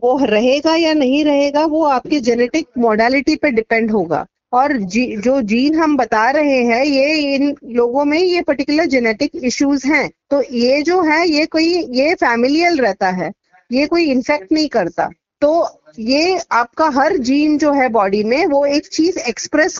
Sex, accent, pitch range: female, native, 235-300 Hz